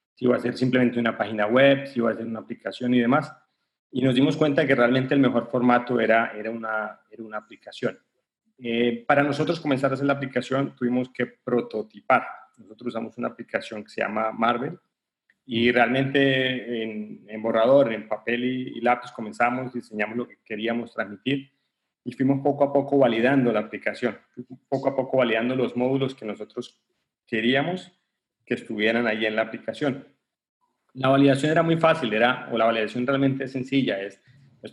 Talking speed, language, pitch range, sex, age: 180 wpm, English, 115-135 Hz, male, 40-59